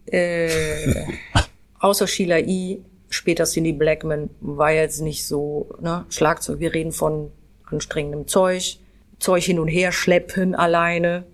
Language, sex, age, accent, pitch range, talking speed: German, female, 30-49, German, 160-200 Hz, 130 wpm